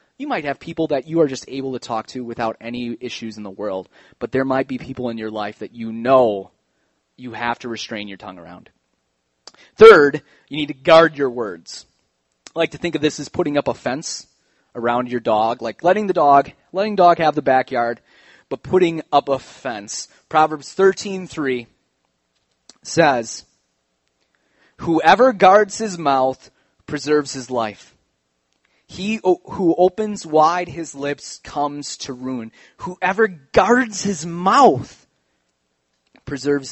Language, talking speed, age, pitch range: English, 155 wpm, 30-49, 110-155 Hz